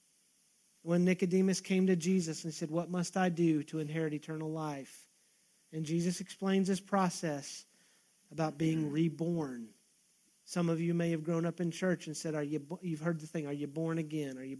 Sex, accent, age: male, American, 40-59